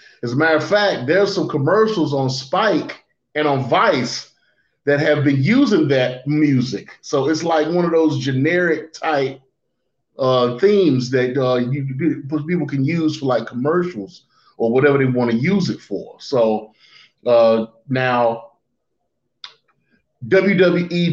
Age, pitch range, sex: 30-49, 115-150 Hz, male